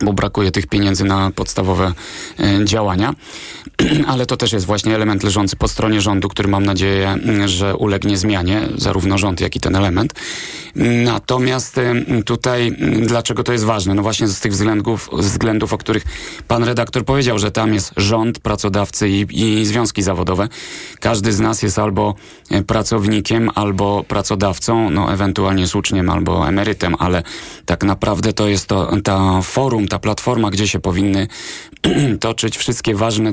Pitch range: 95-115 Hz